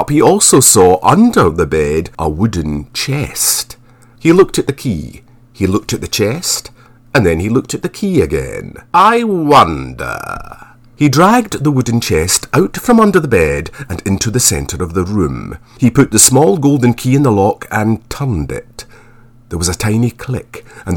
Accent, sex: British, male